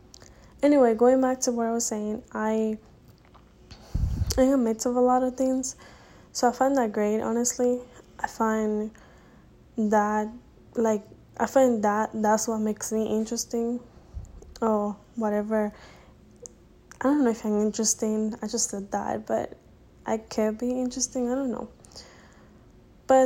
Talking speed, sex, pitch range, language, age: 140 wpm, female, 215-245 Hz, English, 10-29